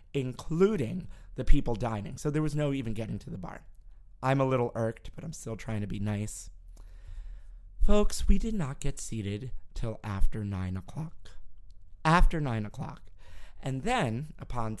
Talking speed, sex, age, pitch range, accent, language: 160 wpm, male, 30-49, 100-135 Hz, American, English